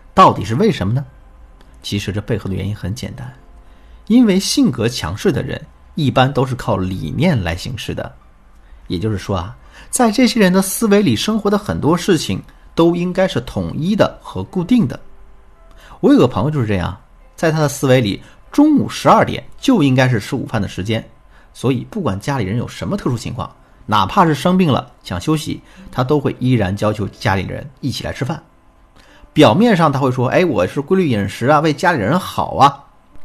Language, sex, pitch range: Chinese, male, 100-160 Hz